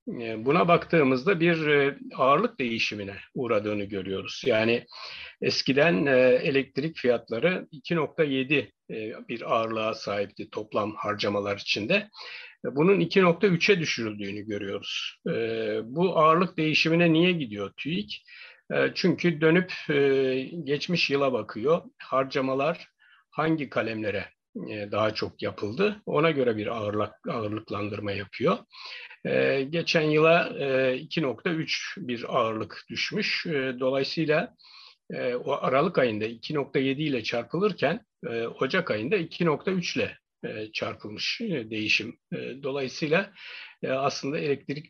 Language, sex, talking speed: Turkish, male, 100 wpm